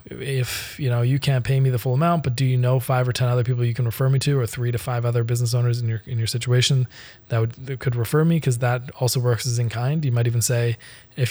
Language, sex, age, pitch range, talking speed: English, male, 20-39, 115-130 Hz, 285 wpm